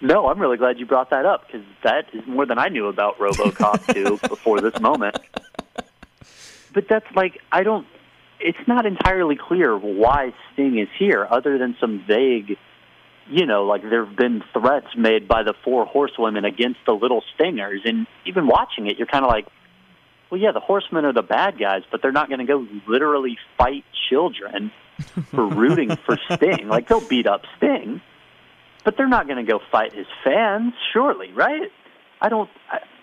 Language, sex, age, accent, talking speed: English, male, 30-49, American, 185 wpm